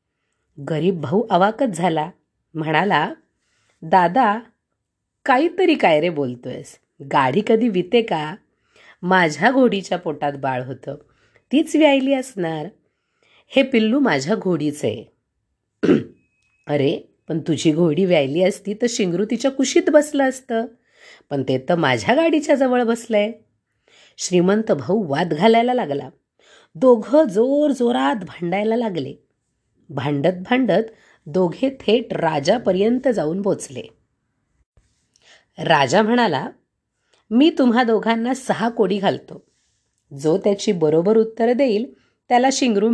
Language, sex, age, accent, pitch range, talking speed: Marathi, female, 30-49, native, 160-240 Hz, 110 wpm